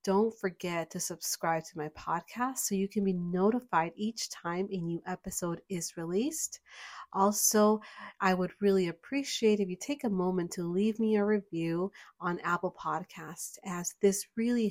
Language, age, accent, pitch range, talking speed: English, 30-49, American, 170-205 Hz, 165 wpm